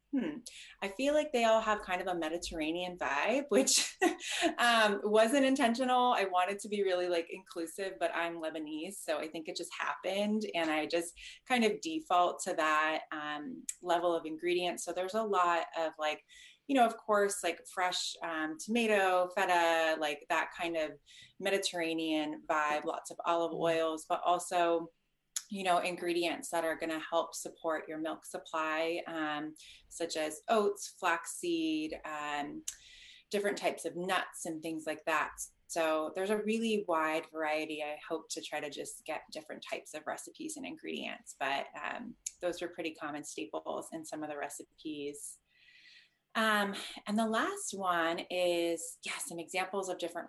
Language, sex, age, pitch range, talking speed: English, female, 20-39, 160-215 Hz, 165 wpm